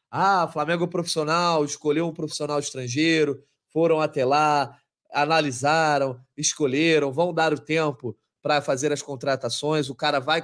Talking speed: 130 wpm